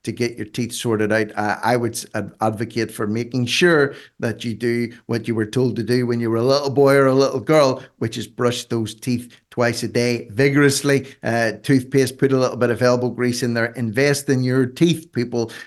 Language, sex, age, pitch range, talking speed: English, male, 50-69, 110-130 Hz, 215 wpm